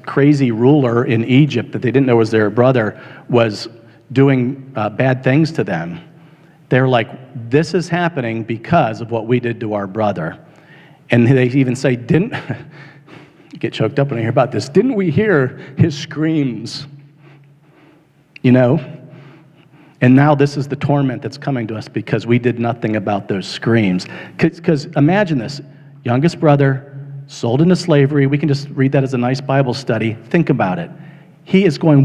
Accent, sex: American, male